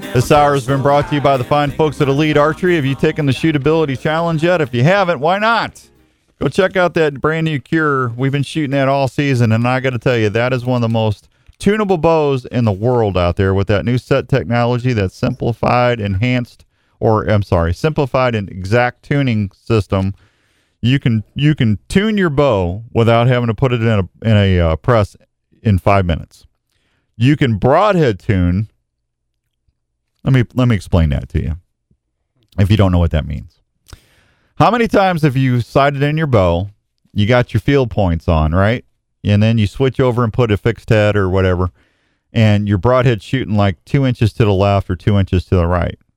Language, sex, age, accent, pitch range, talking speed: English, male, 40-59, American, 95-135 Hz, 205 wpm